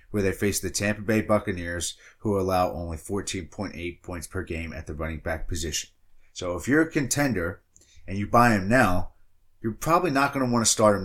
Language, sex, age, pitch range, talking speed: English, male, 30-49, 90-110 Hz, 205 wpm